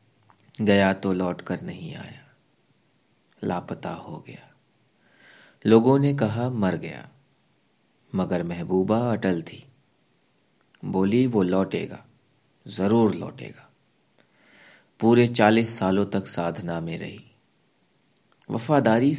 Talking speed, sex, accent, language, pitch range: 95 wpm, male, native, Hindi, 95-125 Hz